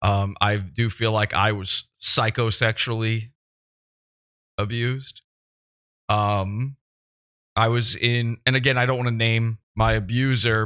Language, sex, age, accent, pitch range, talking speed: English, male, 20-39, American, 110-130 Hz, 125 wpm